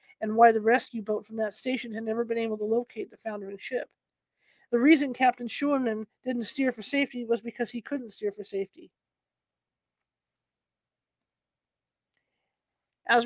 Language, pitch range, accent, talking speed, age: English, 220-255 Hz, American, 150 wpm, 50-69